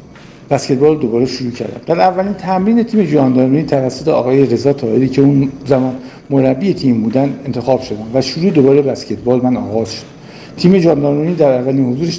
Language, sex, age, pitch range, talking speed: Persian, male, 50-69, 125-155 Hz, 160 wpm